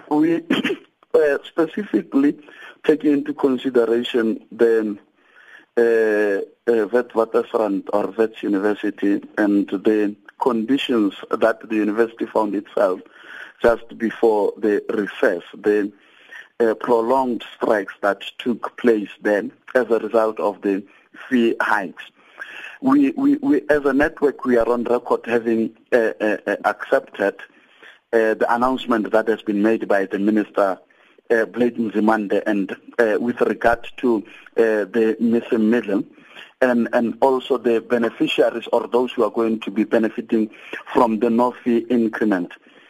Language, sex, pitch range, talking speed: English, male, 110-135 Hz, 130 wpm